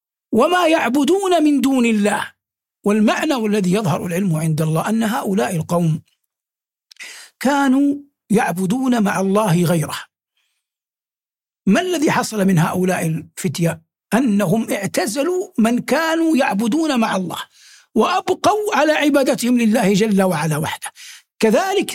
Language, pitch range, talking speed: Arabic, 175-270 Hz, 110 wpm